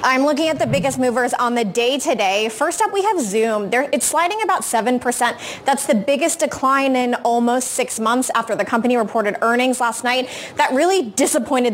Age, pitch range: 20-39, 235-295 Hz